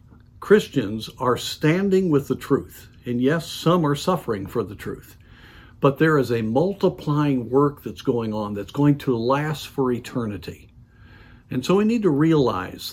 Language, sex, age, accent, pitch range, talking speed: English, male, 50-69, American, 110-145 Hz, 160 wpm